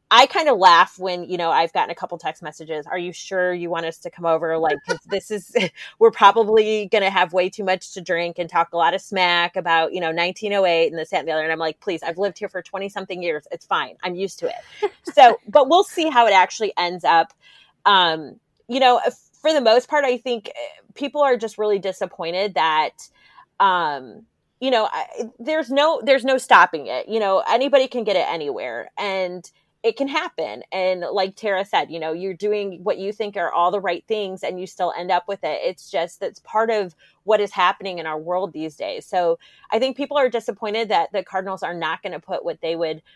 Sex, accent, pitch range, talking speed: female, American, 175-230 Hz, 230 wpm